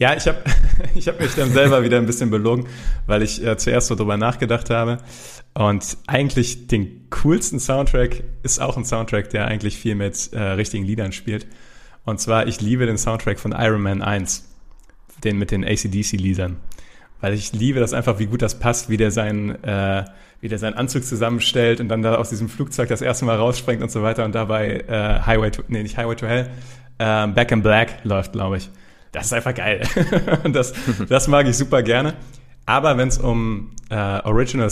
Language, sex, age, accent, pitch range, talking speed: German, male, 30-49, German, 105-125 Hz, 200 wpm